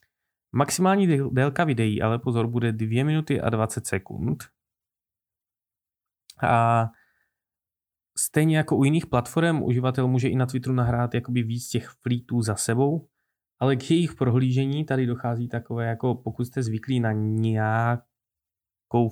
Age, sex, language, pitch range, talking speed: 20-39, male, Czech, 115-135 Hz, 130 wpm